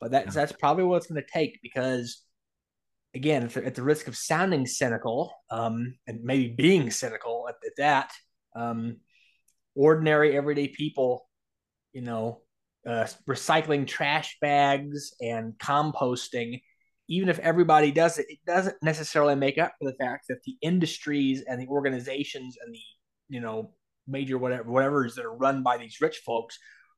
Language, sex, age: English, male, 20-39